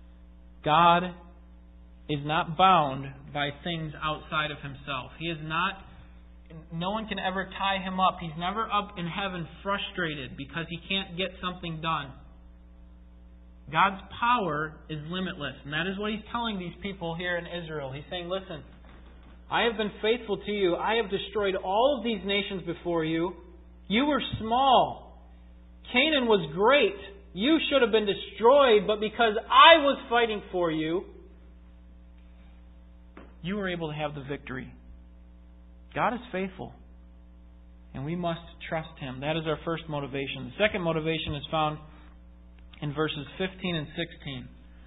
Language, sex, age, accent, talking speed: English, male, 30-49, American, 150 wpm